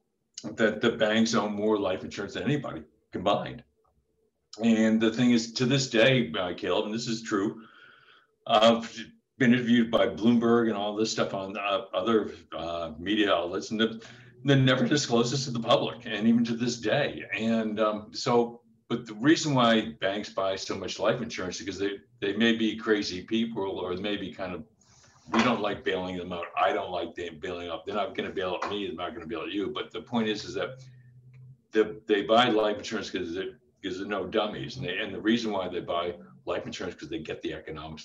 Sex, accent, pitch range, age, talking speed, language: male, American, 95-115 Hz, 60-79, 210 wpm, English